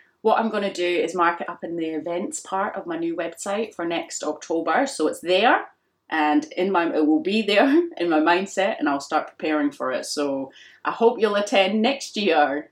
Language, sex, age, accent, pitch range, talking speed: English, female, 30-49, British, 155-225 Hz, 215 wpm